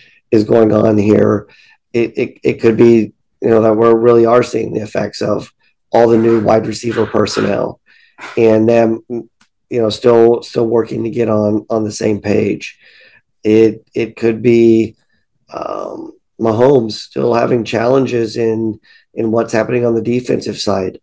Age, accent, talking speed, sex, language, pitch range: 40-59, American, 160 wpm, male, English, 110-120 Hz